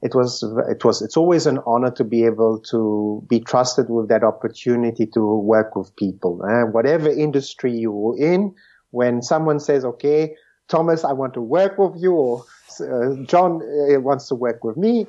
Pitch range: 115-150 Hz